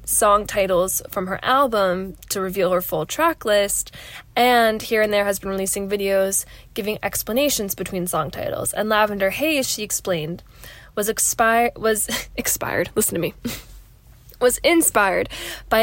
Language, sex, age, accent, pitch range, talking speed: English, female, 10-29, American, 190-230 Hz, 150 wpm